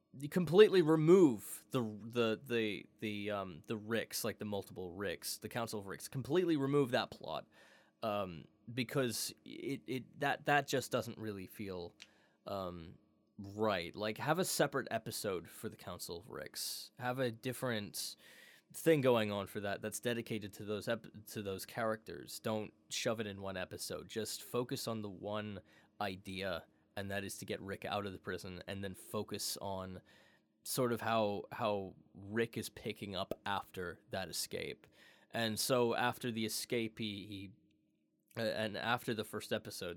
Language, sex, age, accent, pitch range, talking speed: English, male, 20-39, American, 100-120 Hz, 165 wpm